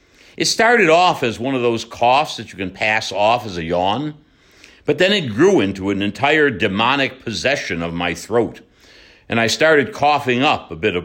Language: English